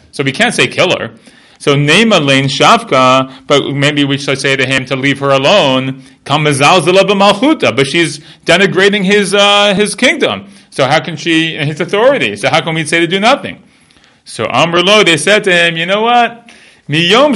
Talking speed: 185 wpm